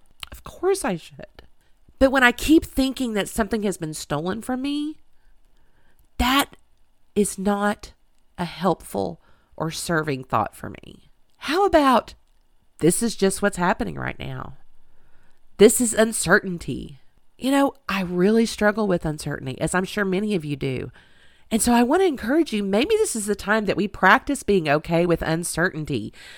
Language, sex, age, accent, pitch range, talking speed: English, female, 40-59, American, 160-230 Hz, 160 wpm